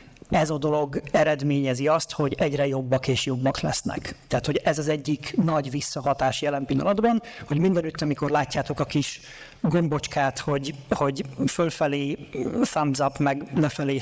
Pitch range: 140-165 Hz